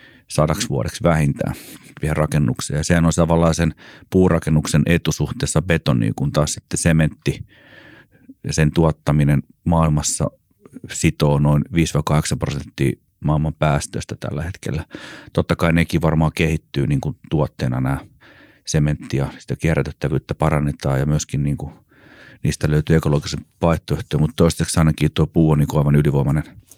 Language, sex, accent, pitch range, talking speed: Finnish, male, native, 75-85 Hz, 135 wpm